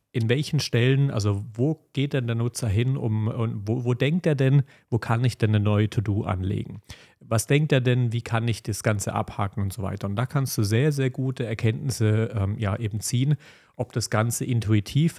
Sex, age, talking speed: male, 40-59, 215 wpm